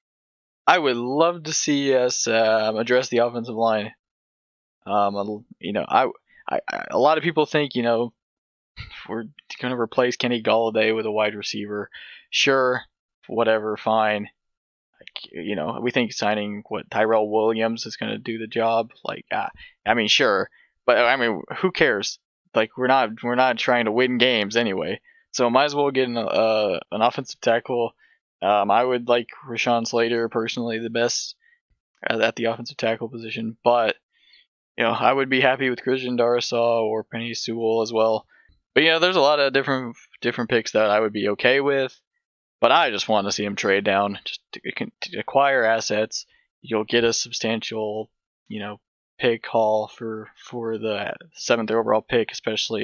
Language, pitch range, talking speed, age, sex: English, 110-125 Hz, 180 wpm, 20-39, male